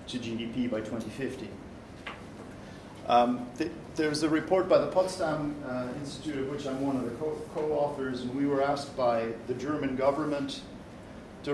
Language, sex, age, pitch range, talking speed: English, male, 50-69, 120-160 Hz, 165 wpm